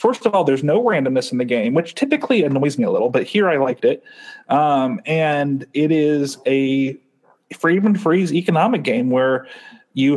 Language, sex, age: English, male, 30-49